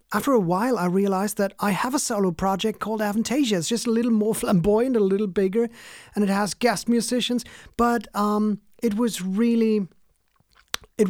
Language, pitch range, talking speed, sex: English, 185-220 Hz, 180 wpm, male